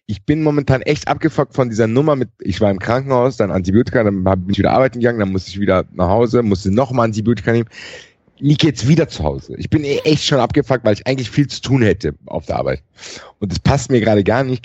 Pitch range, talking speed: 105-140 Hz, 240 wpm